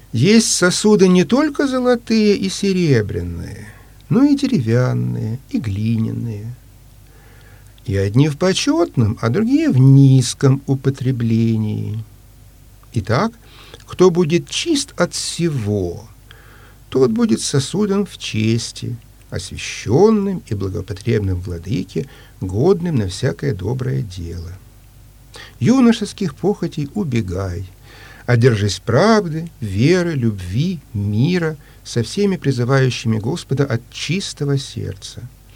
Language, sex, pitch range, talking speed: Russian, male, 110-175 Hz, 95 wpm